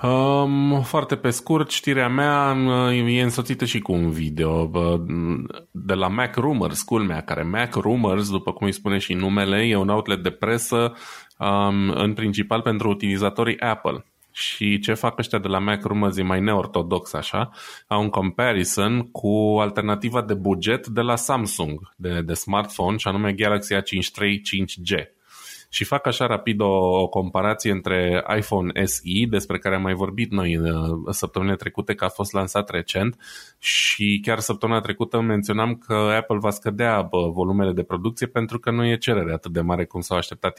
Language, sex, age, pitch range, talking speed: Romanian, male, 20-39, 95-120 Hz, 165 wpm